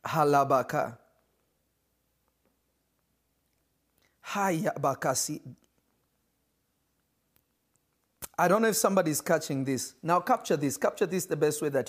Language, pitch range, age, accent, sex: English, 145-215 Hz, 40-59, South African, male